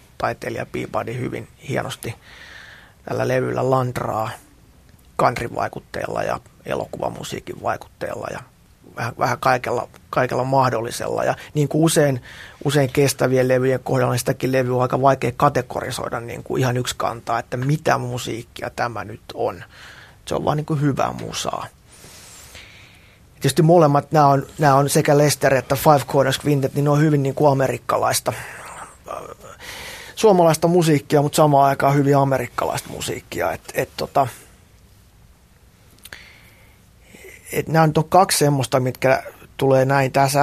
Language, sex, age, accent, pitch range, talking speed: Finnish, male, 30-49, native, 125-145 Hz, 130 wpm